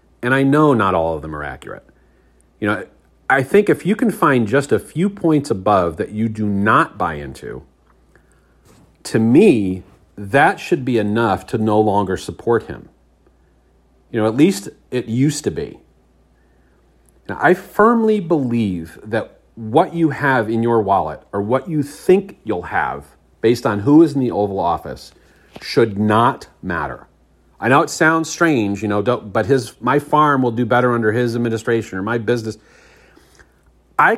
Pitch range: 95-135 Hz